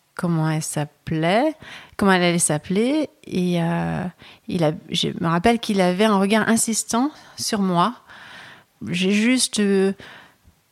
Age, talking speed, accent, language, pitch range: 30-49, 135 wpm, French, French, 170-200 Hz